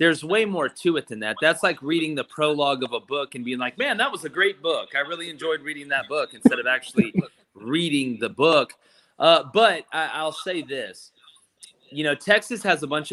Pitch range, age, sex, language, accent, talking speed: 115-150 Hz, 30-49, male, English, American, 215 wpm